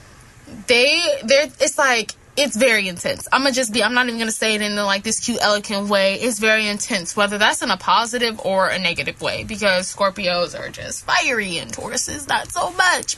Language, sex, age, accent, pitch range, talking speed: English, female, 10-29, American, 210-265 Hz, 205 wpm